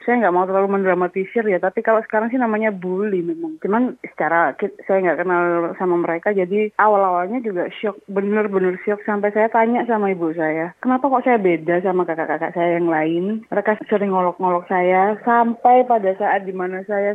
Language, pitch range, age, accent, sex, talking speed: Indonesian, 180-220 Hz, 20-39, native, female, 180 wpm